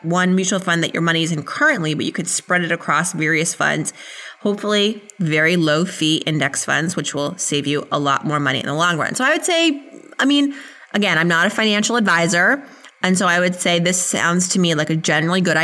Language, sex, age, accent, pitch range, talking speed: English, female, 20-39, American, 150-180 Hz, 225 wpm